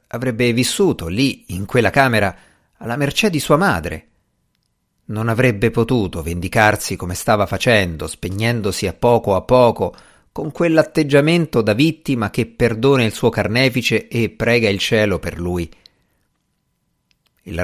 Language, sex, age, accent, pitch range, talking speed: Italian, male, 50-69, native, 100-140 Hz, 135 wpm